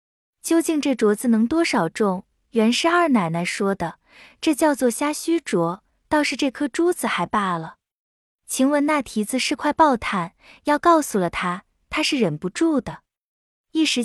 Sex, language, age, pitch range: female, Chinese, 20-39, 200-295 Hz